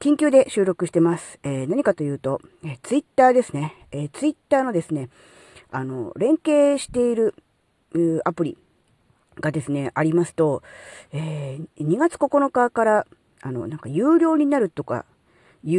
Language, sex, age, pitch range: Japanese, female, 40-59, 150-250 Hz